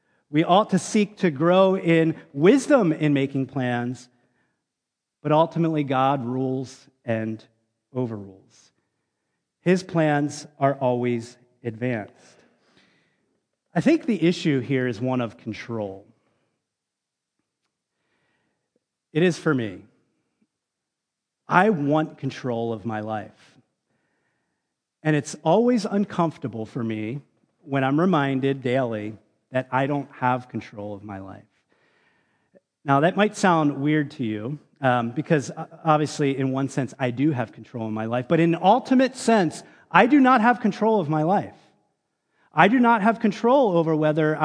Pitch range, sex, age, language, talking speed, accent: 125-175 Hz, male, 40-59, English, 130 wpm, American